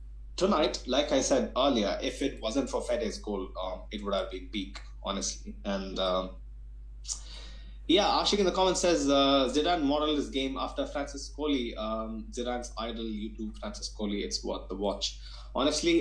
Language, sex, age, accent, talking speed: English, male, 20-39, Indian, 170 wpm